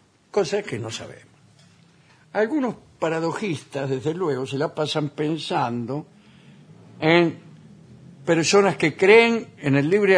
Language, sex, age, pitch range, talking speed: Spanish, male, 60-79, 120-165 Hz, 110 wpm